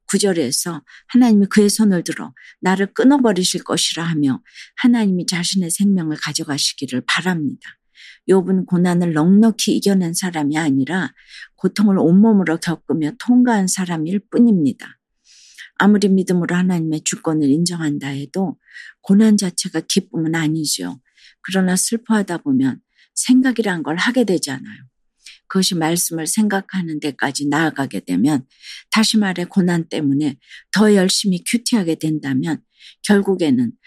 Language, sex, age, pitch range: Korean, female, 50-69, 160-205 Hz